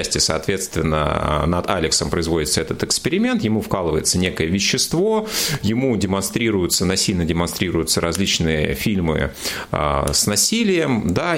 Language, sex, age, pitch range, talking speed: Russian, male, 30-49, 80-120 Hz, 100 wpm